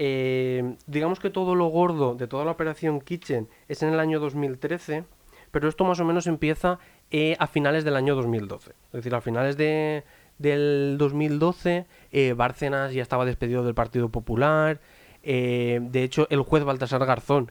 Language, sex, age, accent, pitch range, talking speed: Spanish, male, 20-39, Spanish, 125-155 Hz, 170 wpm